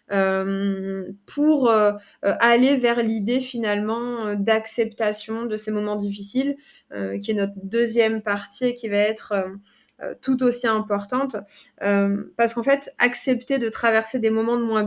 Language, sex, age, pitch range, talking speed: French, female, 20-39, 210-245 Hz, 150 wpm